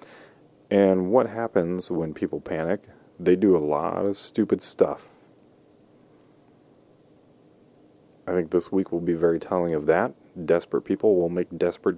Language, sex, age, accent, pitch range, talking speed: English, male, 30-49, American, 85-100 Hz, 140 wpm